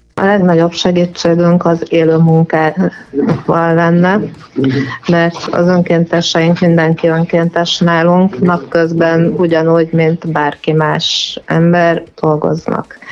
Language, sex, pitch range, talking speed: Hungarian, female, 160-180 Hz, 85 wpm